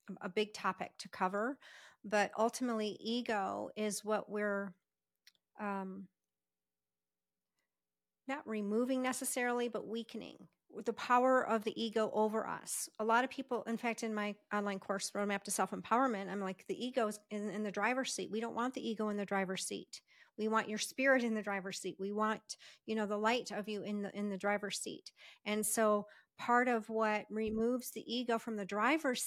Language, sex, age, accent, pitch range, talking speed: English, female, 40-59, American, 200-230 Hz, 185 wpm